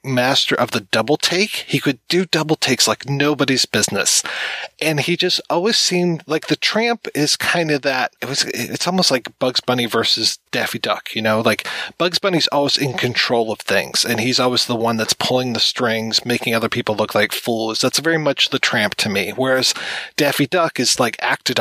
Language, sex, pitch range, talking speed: English, male, 120-145 Hz, 205 wpm